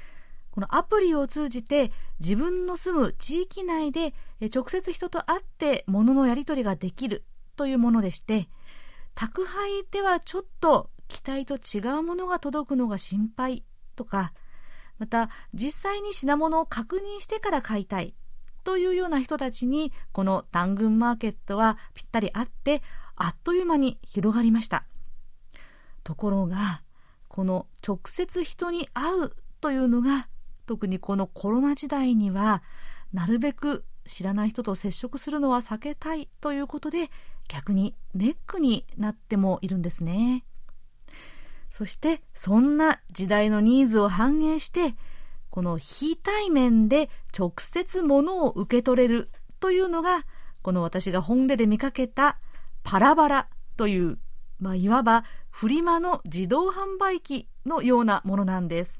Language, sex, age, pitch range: Japanese, female, 40-59, 205-310 Hz